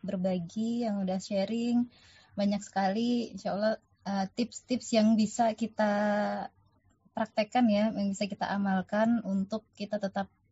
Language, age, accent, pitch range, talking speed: Indonesian, 20-39, native, 190-220 Hz, 120 wpm